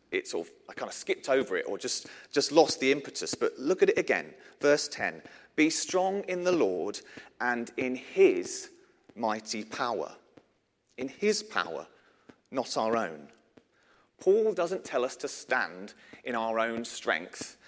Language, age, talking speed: English, 40-59, 155 wpm